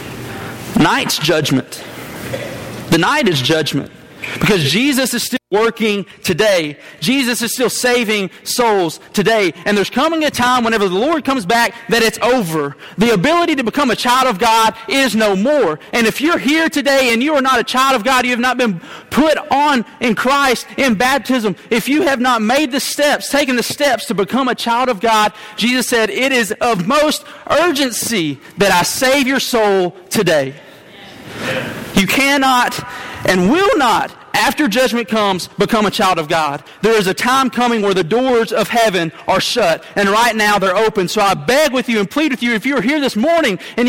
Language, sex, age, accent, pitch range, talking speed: English, male, 30-49, American, 195-260 Hz, 195 wpm